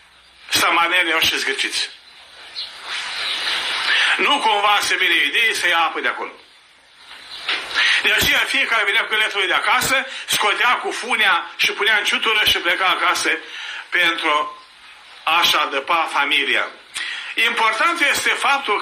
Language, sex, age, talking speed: Romanian, male, 50-69, 130 wpm